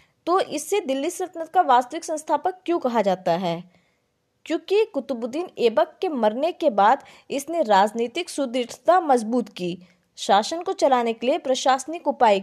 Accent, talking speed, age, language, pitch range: native, 140 wpm, 20-39, Hindi, 225-315 Hz